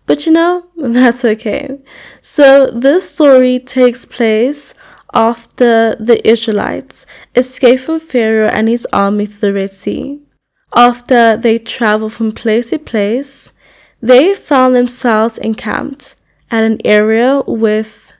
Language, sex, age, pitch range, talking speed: English, female, 10-29, 220-270 Hz, 125 wpm